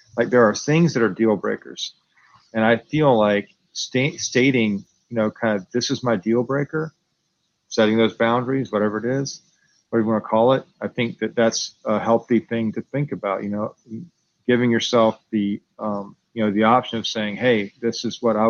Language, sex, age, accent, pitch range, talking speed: English, male, 40-59, American, 105-120 Hz, 200 wpm